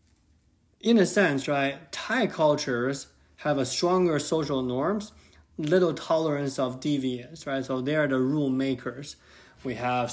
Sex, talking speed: male, 140 wpm